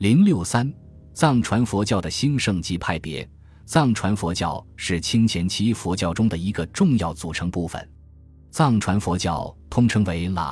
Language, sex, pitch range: Chinese, male, 85-110 Hz